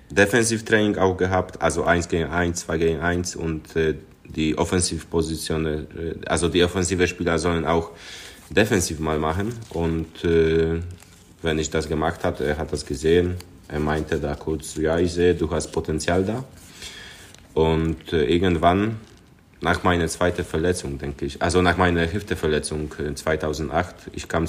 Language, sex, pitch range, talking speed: German, male, 80-90 Hz, 150 wpm